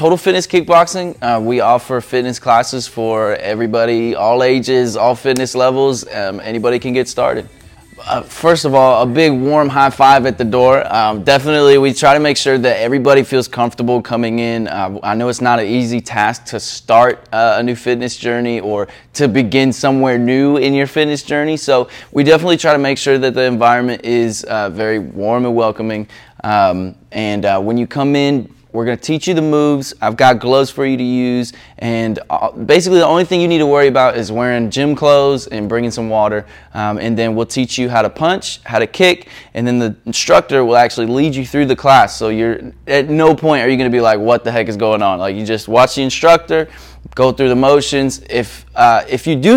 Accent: American